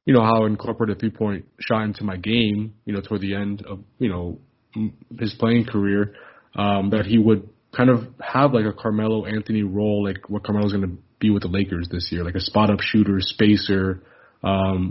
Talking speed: 215 wpm